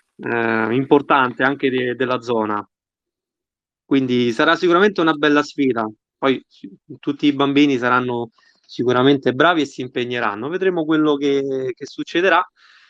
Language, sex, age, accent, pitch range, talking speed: Italian, male, 20-39, native, 130-165 Hz, 130 wpm